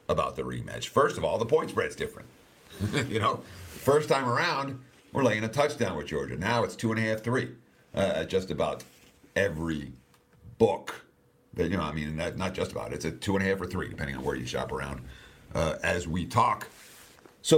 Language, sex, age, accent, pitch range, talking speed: English, male, 50-69, American, 85-120 Hz, 210 wpm